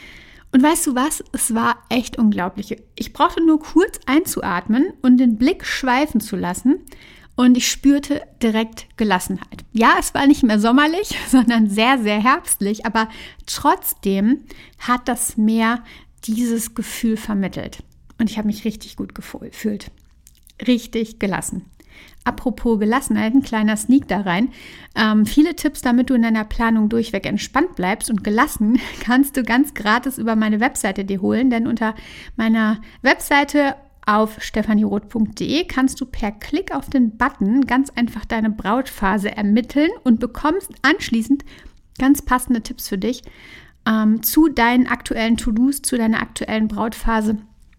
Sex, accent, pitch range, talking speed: female, German, 215-265 Hz, 145 wpm